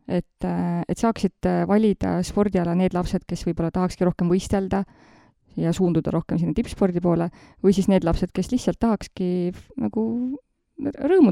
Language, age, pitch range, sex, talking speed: English, 20-39, 170-195 Hz, female, 140 wpm